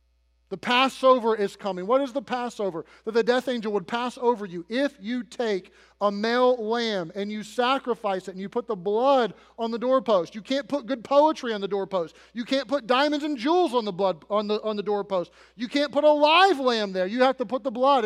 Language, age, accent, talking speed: English, 30-49, American, 230 wpm